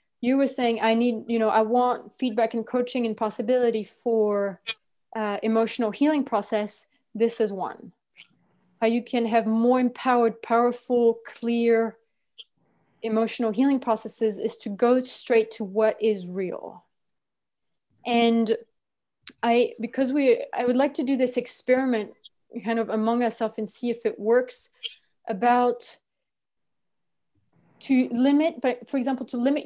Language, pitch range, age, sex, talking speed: English, 225-255 Hz, 20-39, female, 140 wpm